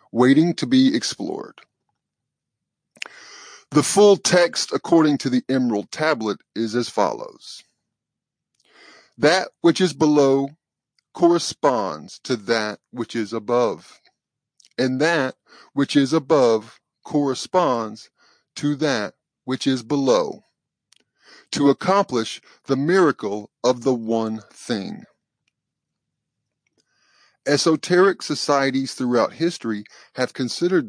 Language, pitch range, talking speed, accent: English, 120-160 Hz, 95 wpm, American